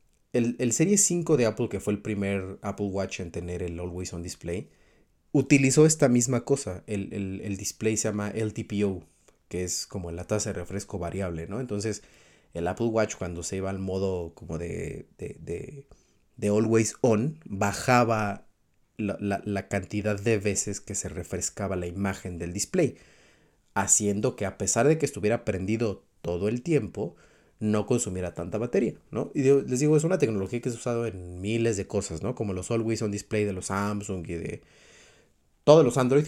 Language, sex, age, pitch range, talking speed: Spanish, male, 30-49, 95-115 Hz, 185 wpm